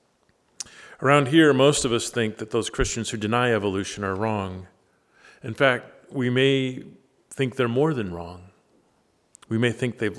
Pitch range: 105-135 Hz